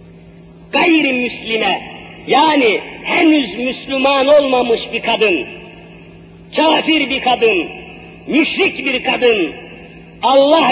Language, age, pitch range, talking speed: Turkish, 50-69, 255-310 Hz, 80 wpm